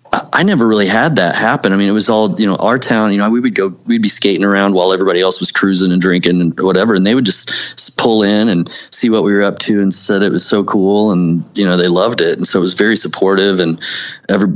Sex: male